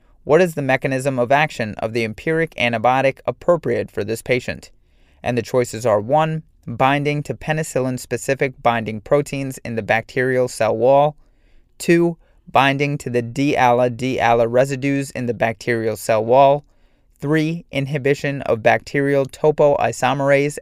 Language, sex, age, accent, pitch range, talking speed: English, male, 30-49, American, 120-145 Hz, 130 wpm